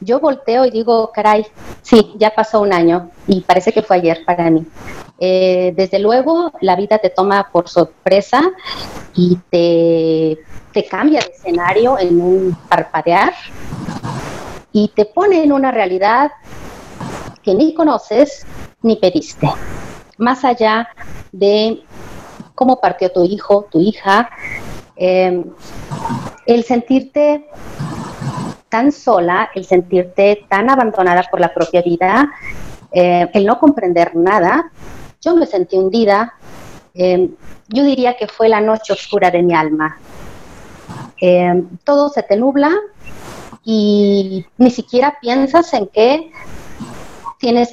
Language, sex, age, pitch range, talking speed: Spanish, female, 40-59, 180-250 Hz, 125 wpm